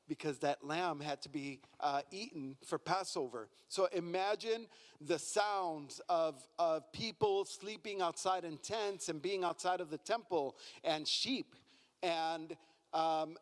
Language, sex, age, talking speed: English, male, 40-59, 140 wpm